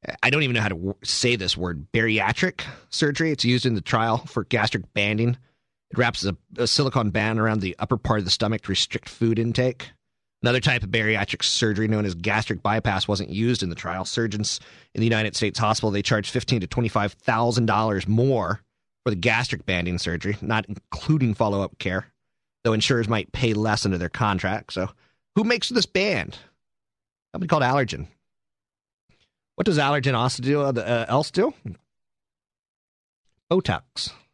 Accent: American